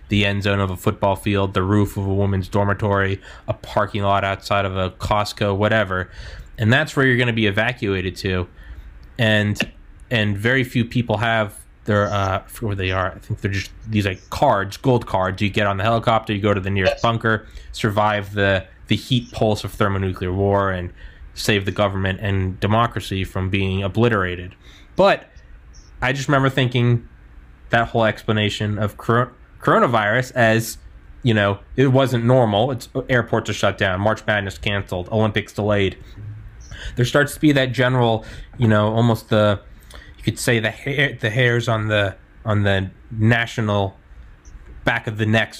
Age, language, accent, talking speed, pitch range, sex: 20-39, English, American, 170 wpm, 95-115 Hz, male